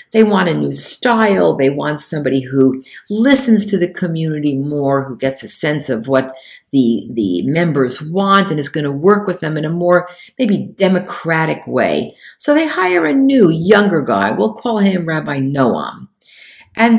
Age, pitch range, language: 50-69, 140-220 Hz, English